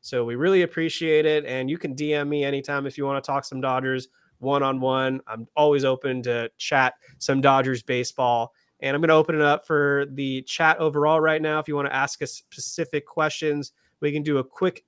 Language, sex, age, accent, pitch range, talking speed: English, male, 30-49, American, 135-155 Hz, 220 wpm